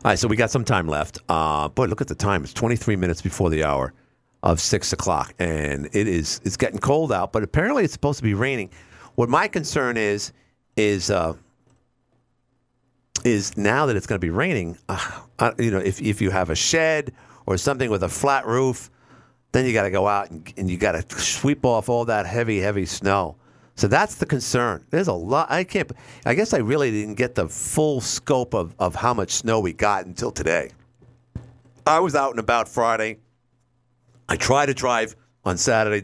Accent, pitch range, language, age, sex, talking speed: American, 100-125 Hz, English, 50-69, male, 205 wpm